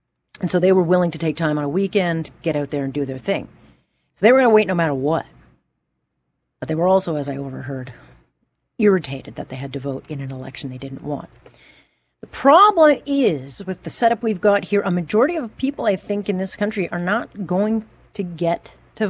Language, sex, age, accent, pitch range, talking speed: English, female, 40-59, American, 135-195 Hz, 220 wpm